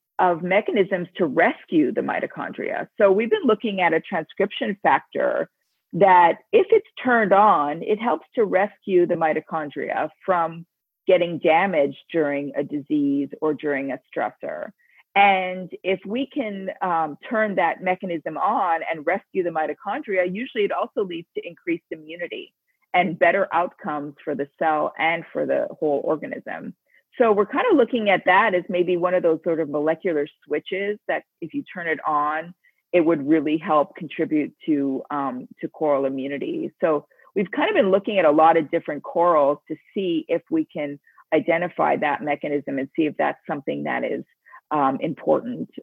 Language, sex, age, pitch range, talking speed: English, female, 40-59, 155-215 Hz, 165 wpm